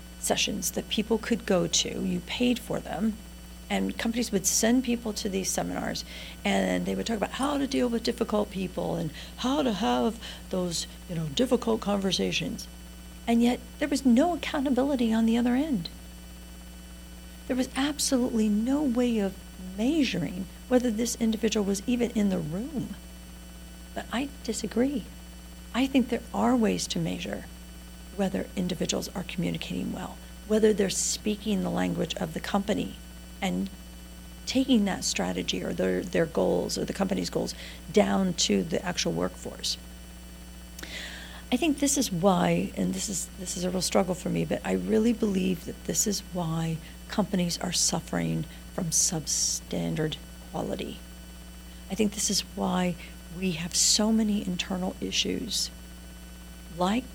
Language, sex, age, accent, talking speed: English, female, 50-69, American, 150 wpm